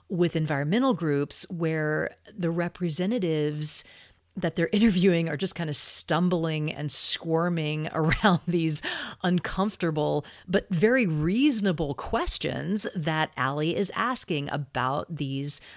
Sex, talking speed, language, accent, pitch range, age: female, 110 wpm, English, American, 155-230 Hz, 40-59